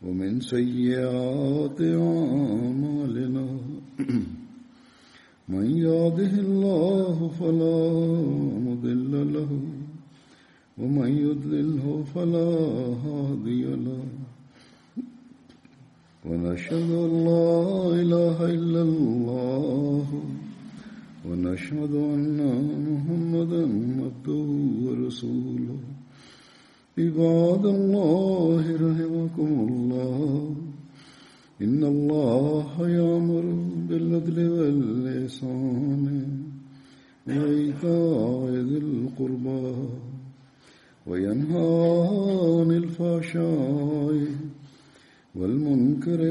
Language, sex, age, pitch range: Malayalam, male, 60-79, 130-165 Hz